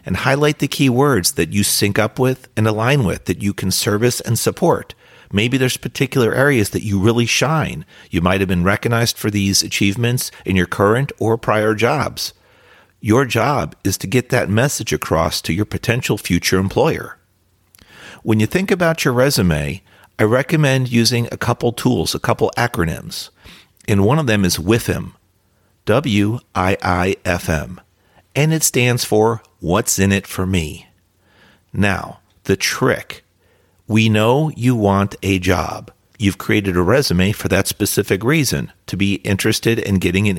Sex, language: male, English